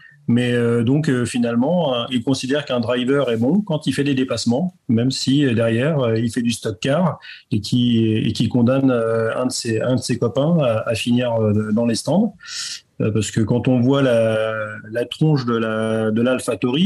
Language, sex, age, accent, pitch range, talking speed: French, male, 30-49, French, 115-135 Hz, 215 wpm